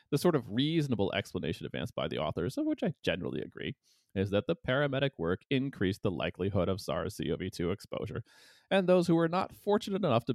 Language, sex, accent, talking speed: English, male, American, 190 wpm